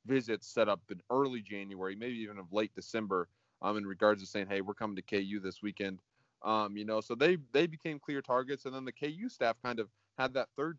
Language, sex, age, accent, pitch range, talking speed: English, male, 20-39, American, 105-125 Hz, 235 wpm